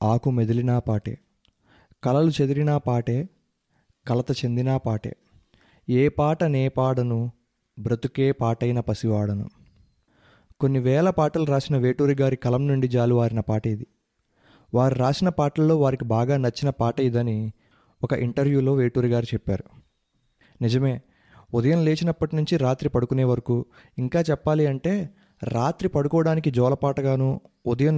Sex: male